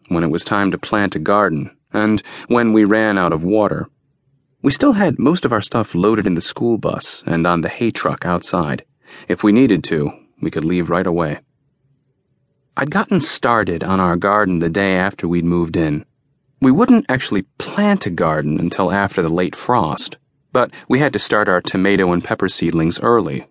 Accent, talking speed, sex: American, 195 wpm, male